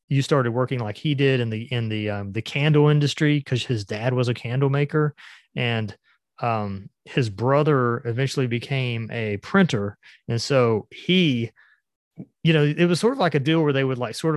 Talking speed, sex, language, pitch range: 190 wpm, male, English, 115-145 Hz